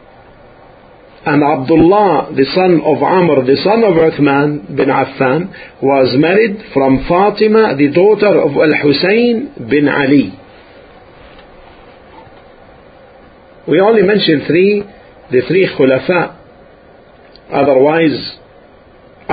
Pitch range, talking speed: 130-185 Hz, 95 wpm